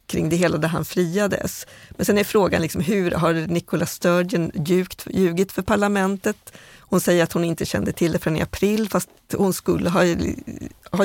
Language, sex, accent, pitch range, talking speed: Swedish, female, native, 165-195 Hz, 190 wpm